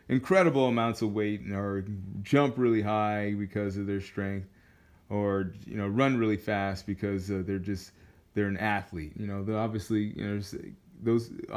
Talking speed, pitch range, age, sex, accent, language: 160 wpm, 100-130 Hz, 20-39, male, American, English